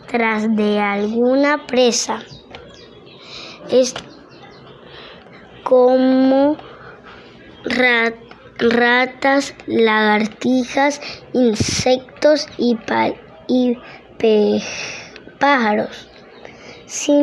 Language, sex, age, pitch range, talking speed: Spanish, male, 20-39, 225-275 Hz, 45 wpm